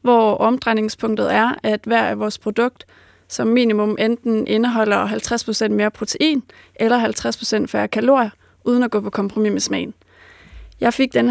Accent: native